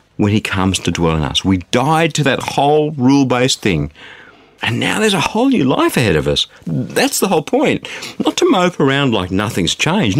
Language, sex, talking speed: English, male, 205 wpm